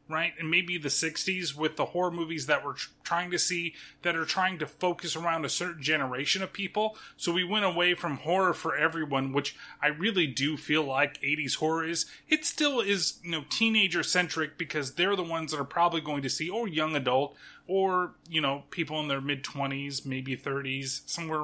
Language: English